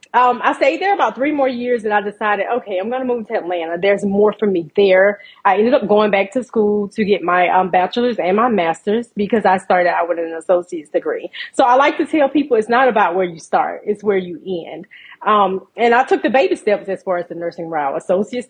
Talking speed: 245 wpm